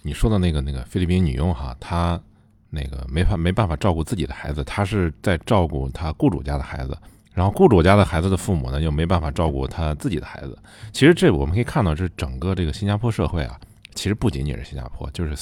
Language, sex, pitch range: Chinese, male, 75-105 Hz